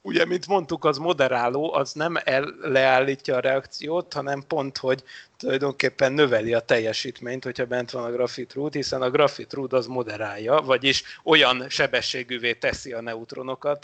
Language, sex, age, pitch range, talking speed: Hungarian, male, 30-49, 130-160 Hz, 145 wpm